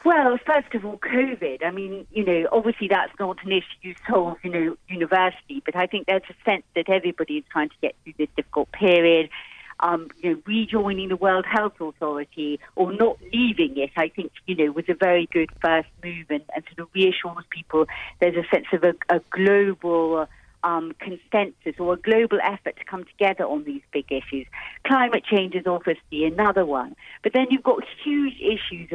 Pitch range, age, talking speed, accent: 160-200 Hz, 40-59, 195 wpm, British